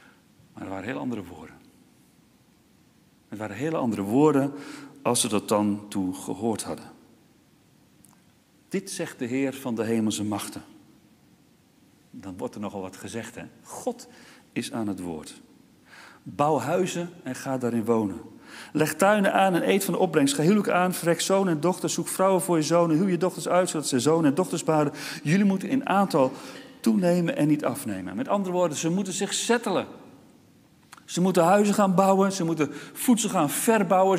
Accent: Dutch